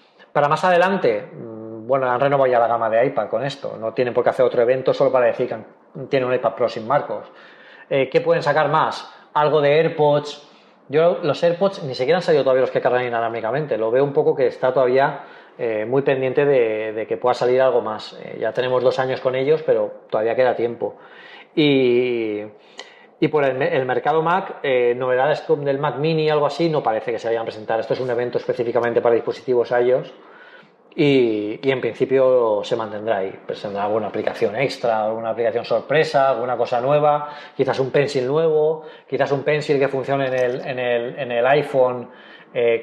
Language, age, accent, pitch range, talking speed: Spanish, 20-39, Spanish, 125-195 Hz, 195 wpm